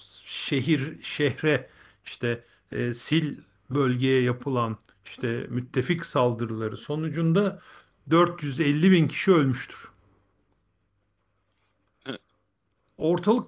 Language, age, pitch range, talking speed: Turkish, 50-69, 120-155 Hz, 70 wpm